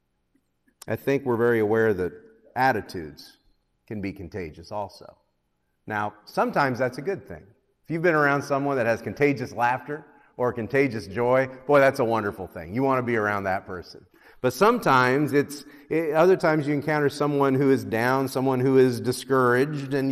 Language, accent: English, American